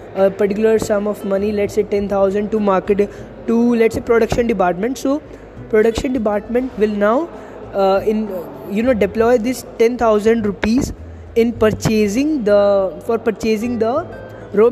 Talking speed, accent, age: 145 wpm, Indian, 20-39